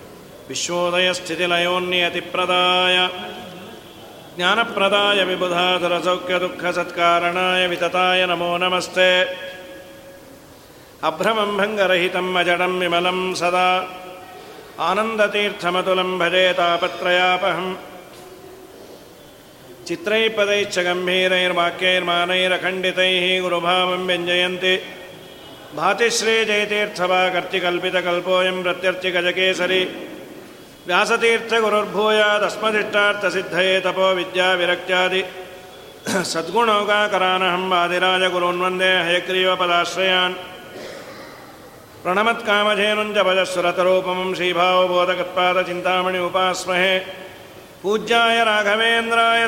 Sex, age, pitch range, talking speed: male, 50-69, 180-190 Hz, 30 wpm